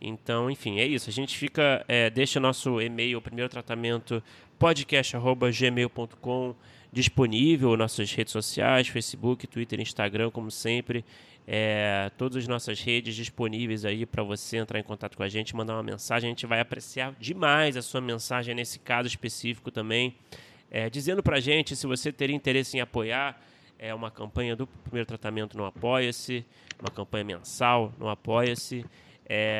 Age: 20-39